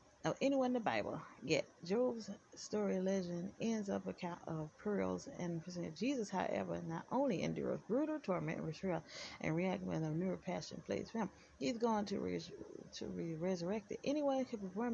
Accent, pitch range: American, 185-215 Hz